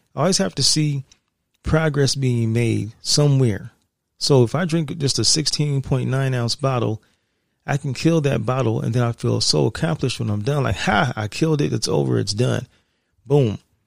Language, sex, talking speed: English, male, 180 wpm